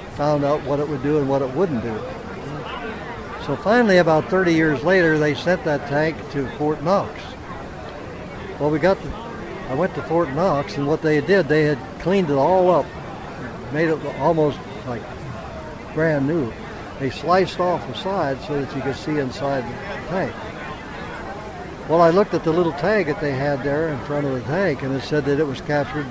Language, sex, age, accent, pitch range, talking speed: English, male, 60-79, American, 135-170 Hz, 195 wpm